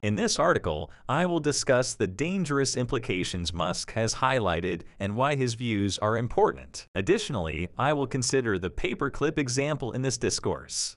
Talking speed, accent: 155 wpm, American